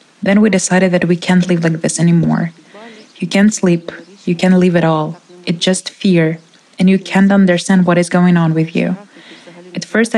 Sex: female